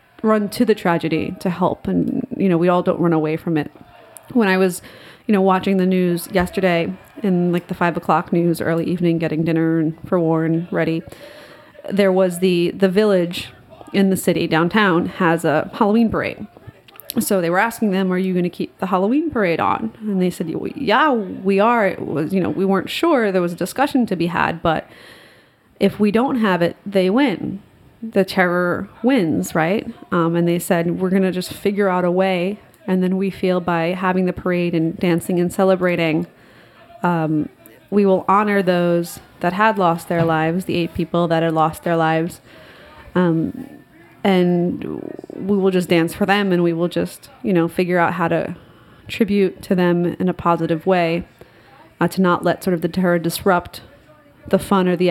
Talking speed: 195 wpm